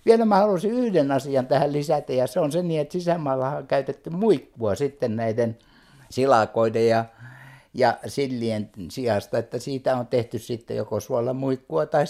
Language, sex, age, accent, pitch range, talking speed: Finnish, male, 60-79, native, 130-150 Hz, 150 wpm